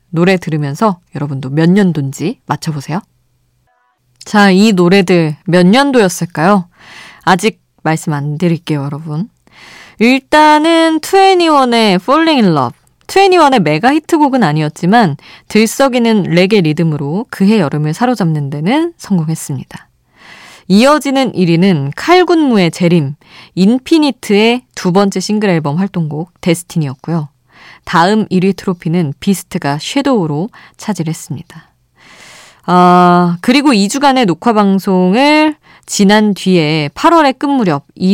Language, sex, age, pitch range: Korean, female, 20-39, 160-240 Hz